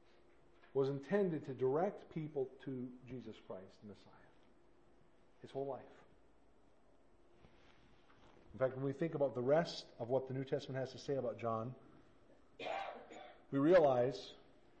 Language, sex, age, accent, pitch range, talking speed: English, male, 50-69, American, 125-170 Hz, 135 wpm